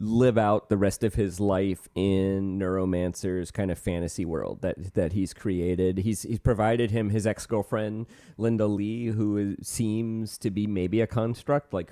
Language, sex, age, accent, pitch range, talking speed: English, male, 30-49, American, 100-120 Hz, 170 wpm